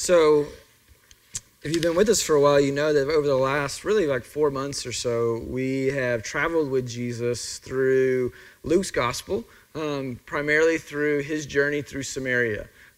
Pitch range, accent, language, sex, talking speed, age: 130-155 Hz, American, English, male, 165 wpm, 30-49